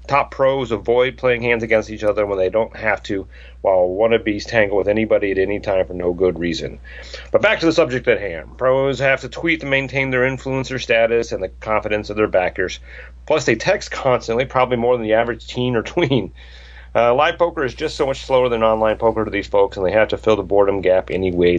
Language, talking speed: English, 230 wpm